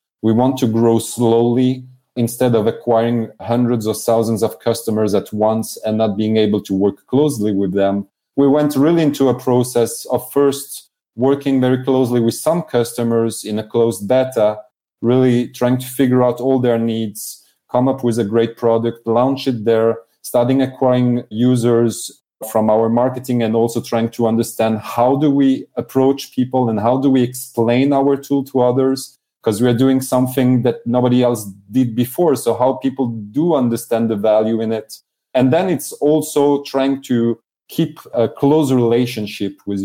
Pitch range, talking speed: 110-130 Hz, 170 wpm